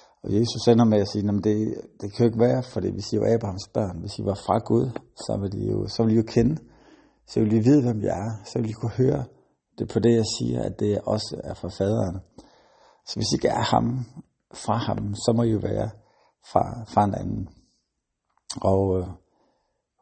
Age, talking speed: 60-79, 215 wpm